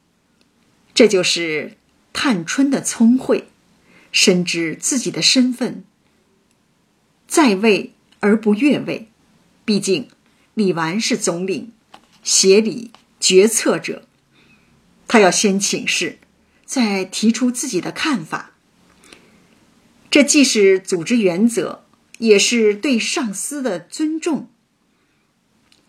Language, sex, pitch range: Chinese, female, 195-255 Hz